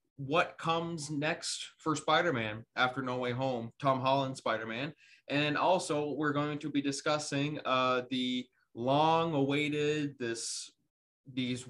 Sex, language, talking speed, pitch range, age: male, English, 125 wpm, 125-145 Hz, 20-39